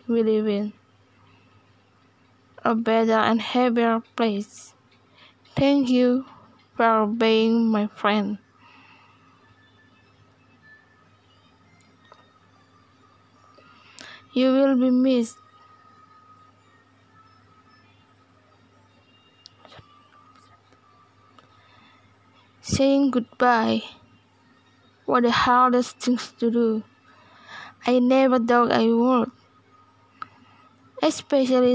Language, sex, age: Indonesian, female, 20-39